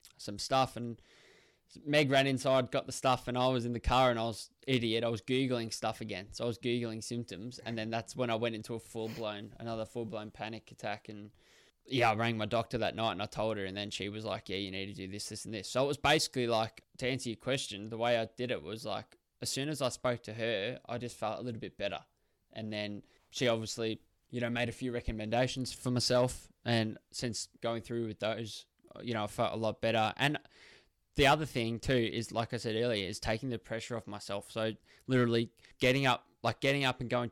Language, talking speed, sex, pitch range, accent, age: English, 240 wpm, male, 110-125 Hz, Australian, 20-39